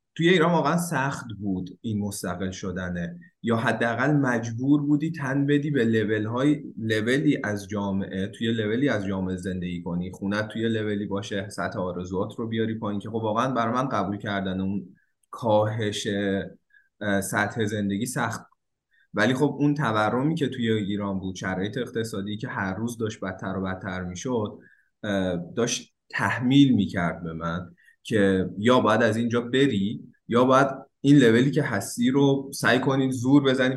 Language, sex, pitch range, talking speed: Persian, male, 100-130 Hz, 155 wpm